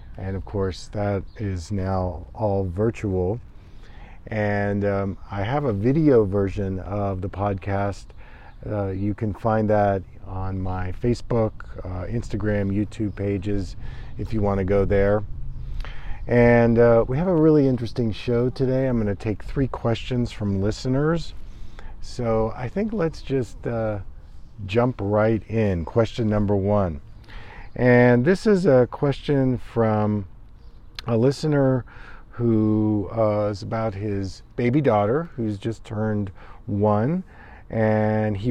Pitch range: 100-115 Hz